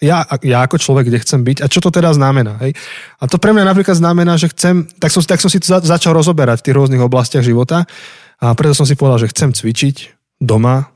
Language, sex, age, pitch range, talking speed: Slovak, male, 20-39, 115-140 Hz, 240 wpm